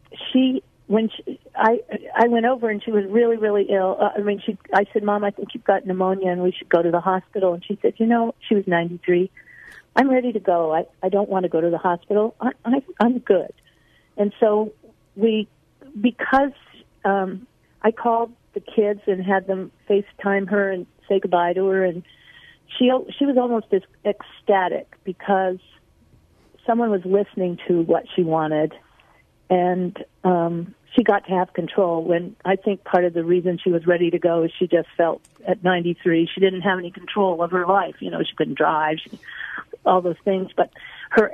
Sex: female